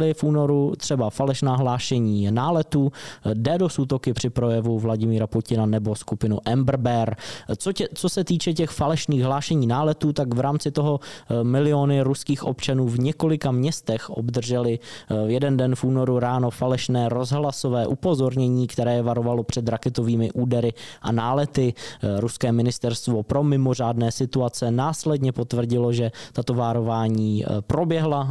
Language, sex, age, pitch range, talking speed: Czech, male, 20-39, 115-140 Hz, 130 wpm